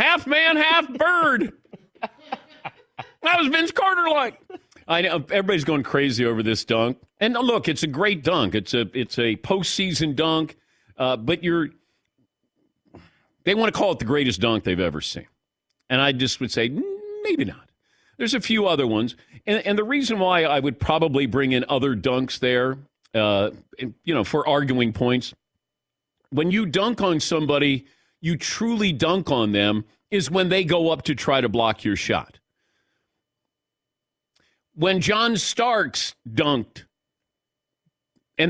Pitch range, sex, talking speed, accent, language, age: 130-215 Hz, male, 155 wpm, American, English, 40-59